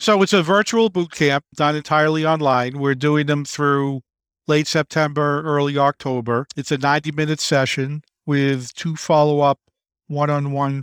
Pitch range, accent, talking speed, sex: 130-150 Hz, American, 140 wpm, male